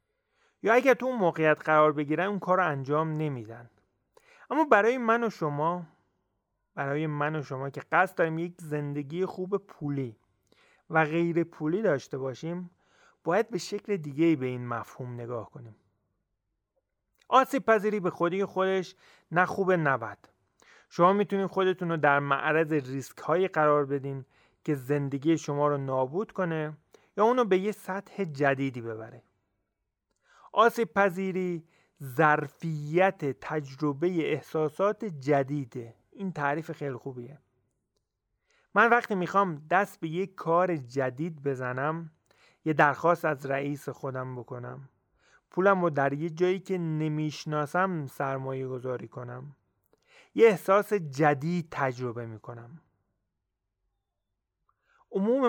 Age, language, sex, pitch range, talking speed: 30-49, Persian, male, 135-185 Hz, 120 wpm